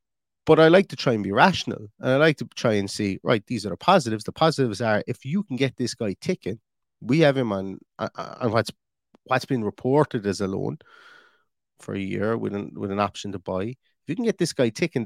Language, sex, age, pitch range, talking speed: English, male, 30-49, 115-160 Hz, 235 wpm